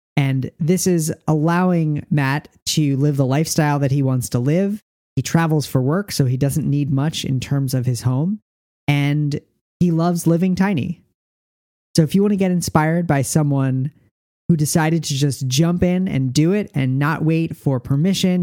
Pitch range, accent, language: 140-180 Hz, American, English